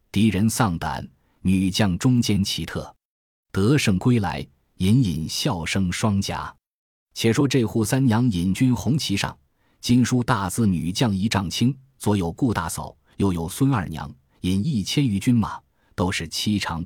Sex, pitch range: male, 90-115 Hz